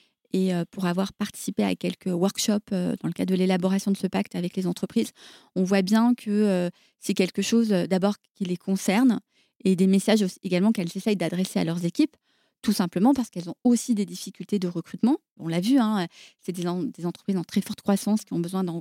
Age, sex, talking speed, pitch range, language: 30-49, female, 205 wpm, 185-225 Hz, French